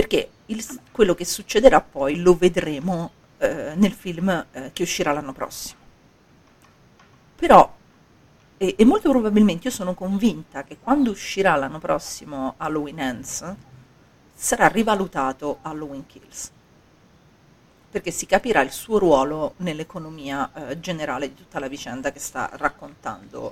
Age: 40-59